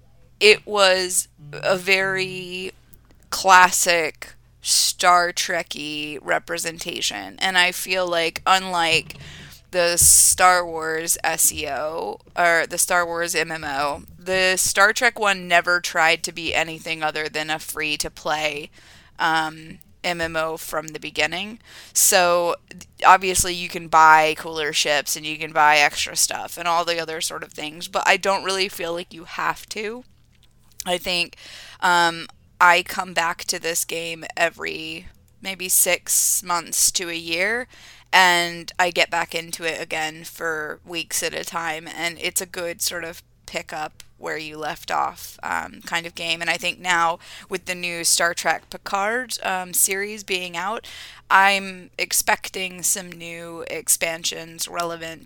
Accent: American